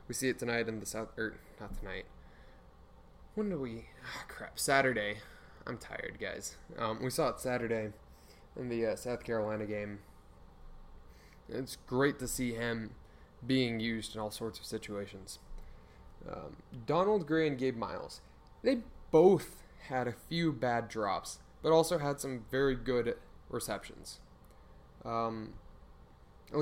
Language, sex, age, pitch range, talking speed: English, male, 10-29, 105-130 Hz, 145 wpm